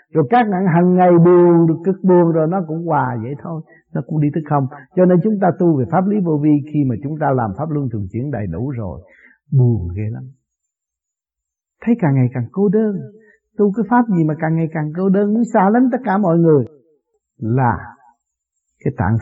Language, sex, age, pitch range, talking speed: Vietnamese, male, 60-79, 125-185 Hz, 220 wpm